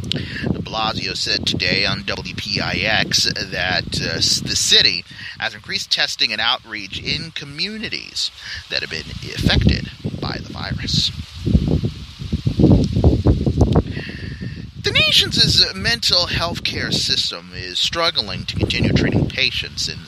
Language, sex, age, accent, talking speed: English, male, 30-49, American, 110 wpm